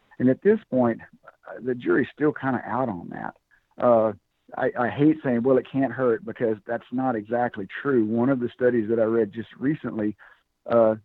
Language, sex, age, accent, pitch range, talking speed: English, male, 60-79, American, 110-125 Hz, 195 wpm